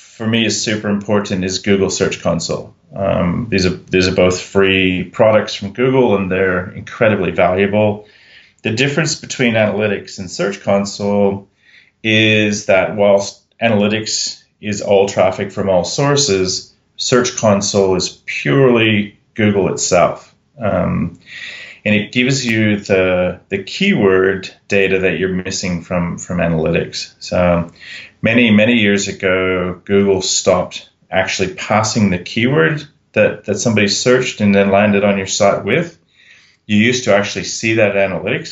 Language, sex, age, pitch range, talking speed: English, male, 30-49, 95-115 Hz, 135 wpm